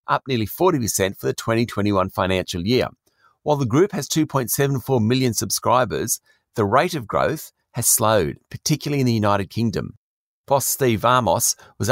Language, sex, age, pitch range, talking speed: English, male, 40-59, 105-130 Hz, 150 wpm